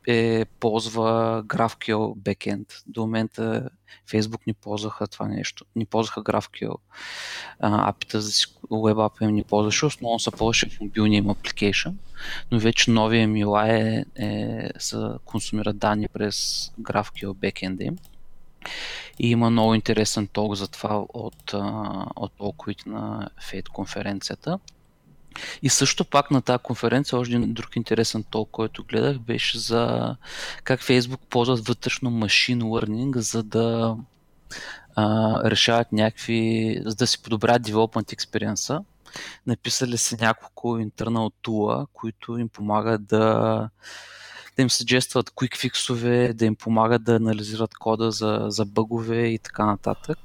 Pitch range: 105-120 Hz